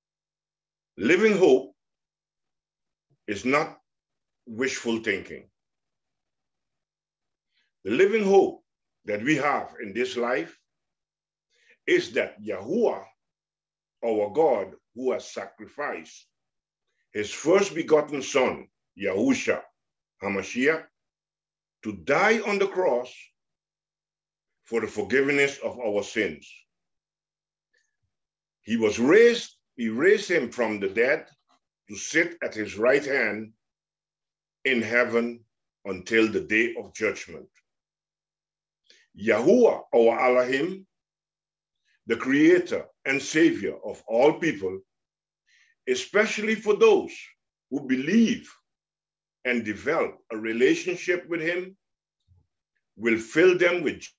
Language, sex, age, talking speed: English, male, 50-69, 95 wpm